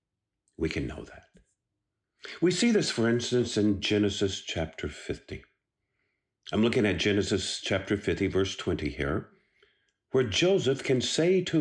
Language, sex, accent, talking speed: English, male, American, 140 wpm